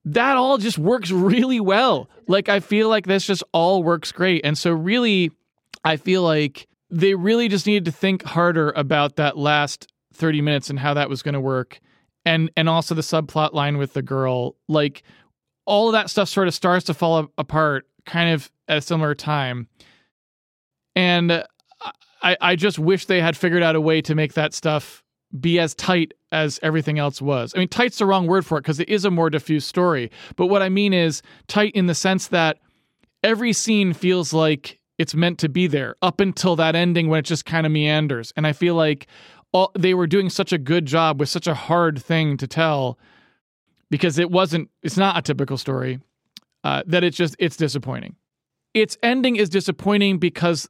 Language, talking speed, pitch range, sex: English, 200 wpm, 150-190 Hz, male